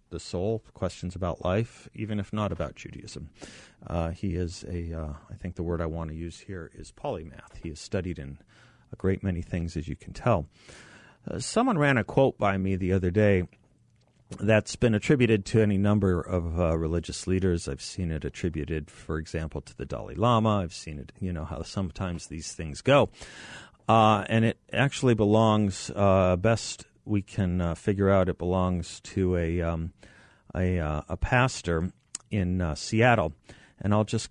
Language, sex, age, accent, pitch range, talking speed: English, male, 40-59, American, 85-110 Hz, 185 wpm